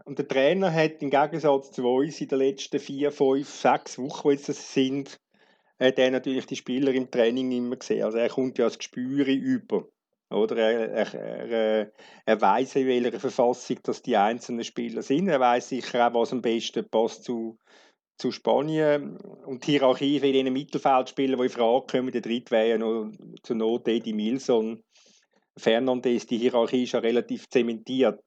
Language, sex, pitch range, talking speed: German, male, 120-145 Hz, 185 wpm